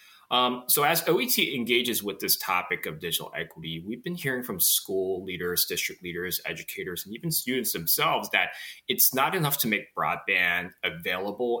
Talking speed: 165 wpm